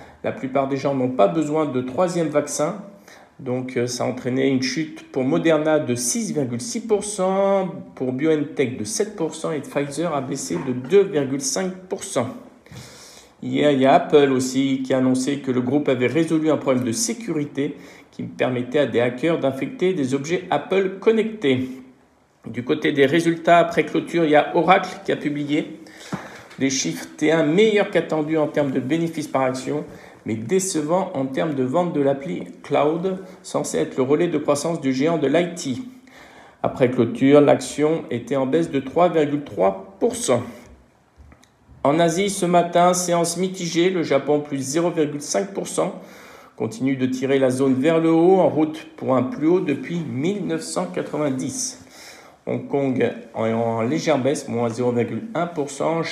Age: 50-69